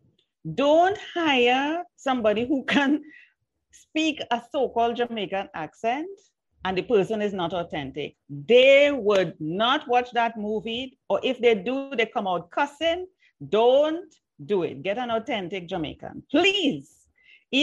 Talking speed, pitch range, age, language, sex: 130 wpm, 200-305 Hz, 40-59, English, female